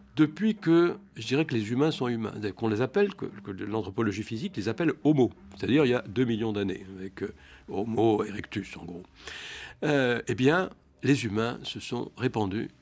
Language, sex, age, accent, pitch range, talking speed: French, male, 60-79, French, 100-130 Hz, 185 wpm